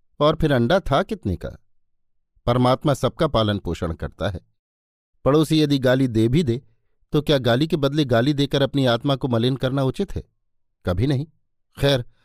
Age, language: 50-69, Hindi